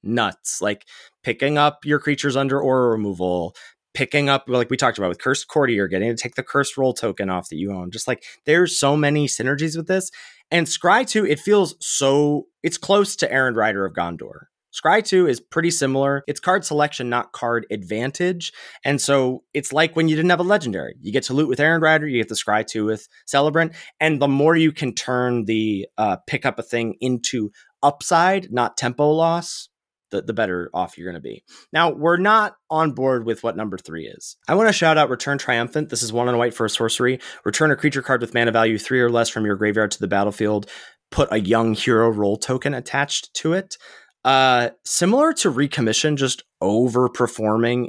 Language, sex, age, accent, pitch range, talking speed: English, male, 30-49, American, 115-155 Hz, 210 wpm